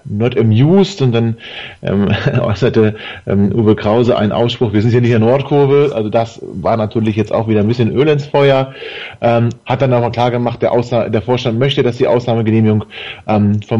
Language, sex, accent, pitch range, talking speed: German, male, German, 100-120 Hz, 200 wpm